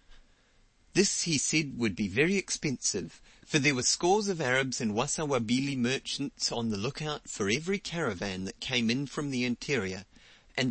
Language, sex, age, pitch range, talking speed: English, male, 30-49, 115-165 Hz, 165 wpm